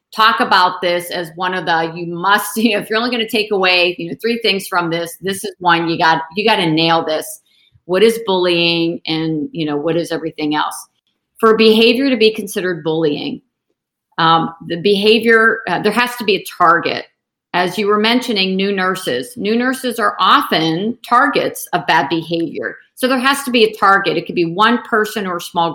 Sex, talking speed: female, 205 wpm